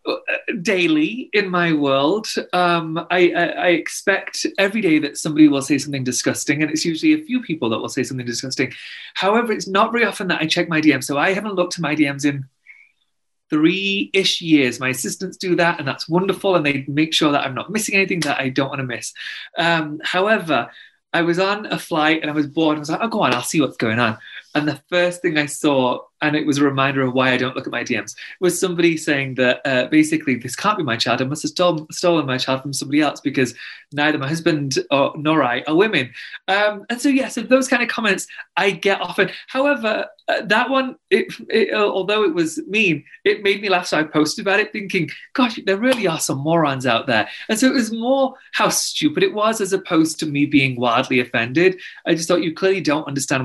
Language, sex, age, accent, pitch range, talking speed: English, male, 30-49, British, 140-205 Hz, 225 wpm